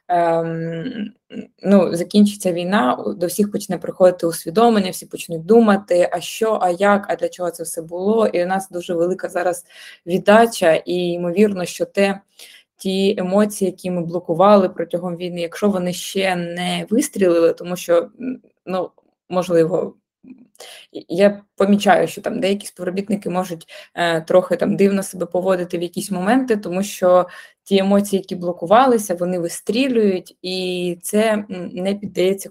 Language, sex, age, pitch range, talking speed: Ukrainian, female, 20-39, 175-205 Hz, 140 wpm